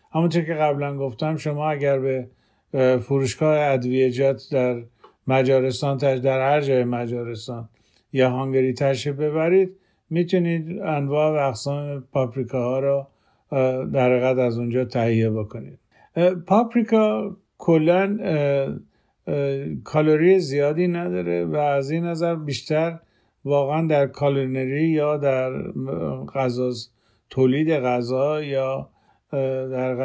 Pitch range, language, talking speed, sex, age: 130-155 Hz, Persian, 100 wpm, male, 50-69